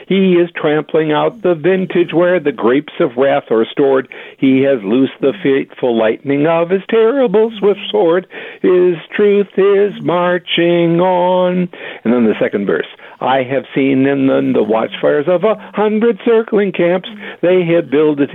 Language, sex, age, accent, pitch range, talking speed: English, male, 60-79, American, 140-200 Hz, 165 wpm